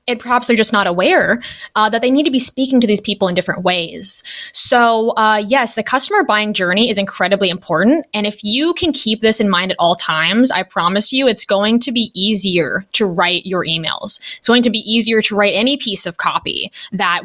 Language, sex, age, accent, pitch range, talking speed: English, female, 20-39, American, 200-265 Hz, 225 wpm